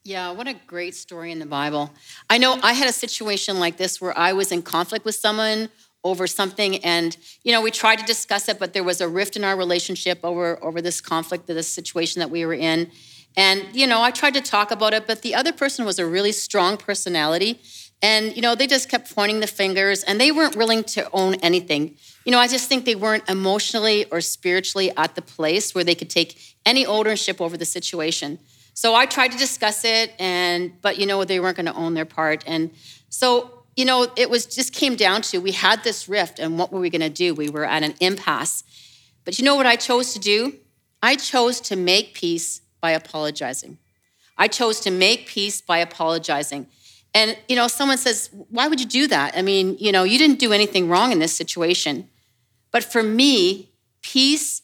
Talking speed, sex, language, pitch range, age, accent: 215 wpm, female, English, 170-225 Hz, 40-59, American